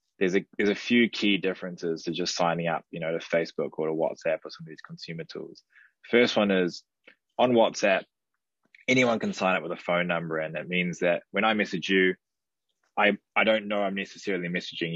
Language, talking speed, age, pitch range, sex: English, 210 wpm, 20-39, 85-105 Hz, male